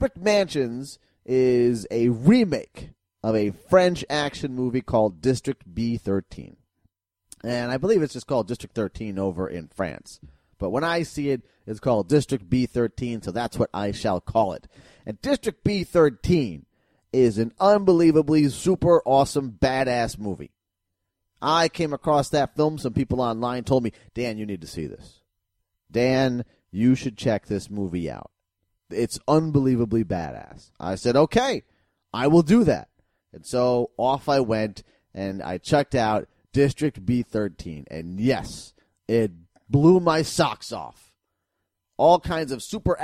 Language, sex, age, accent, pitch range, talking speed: English, male, 30-49, American, 105-150 Hz, 145 wpm